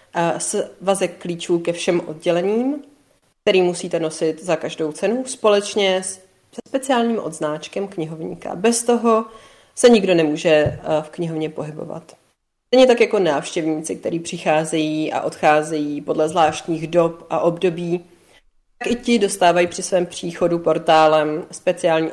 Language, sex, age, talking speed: Czech, female, 30-49, 130 wpm